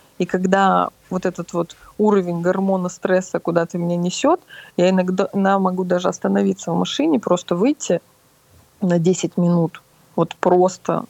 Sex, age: female, 20-39